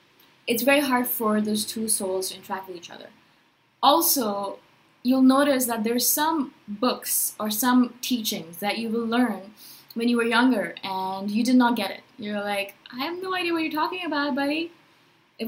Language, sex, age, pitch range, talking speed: English, female, 20-39, 205-255 Hz, 185 wpm